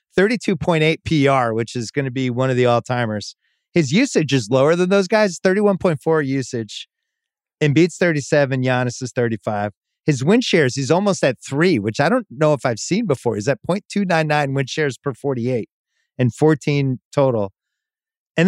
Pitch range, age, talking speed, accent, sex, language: 125-175 Hz, 30-49, 165 wpm, American, male, English